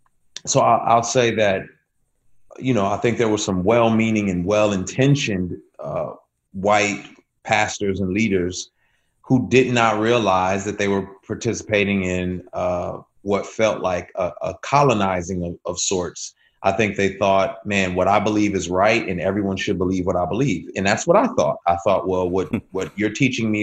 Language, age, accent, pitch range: English, 30-49, American, 95-110 Hz